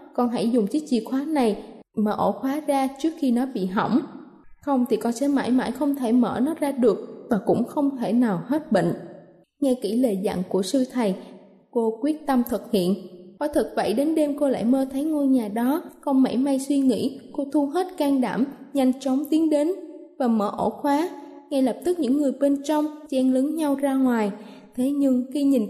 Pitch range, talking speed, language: 240-295 Hz, 215 wpm, Vietnamese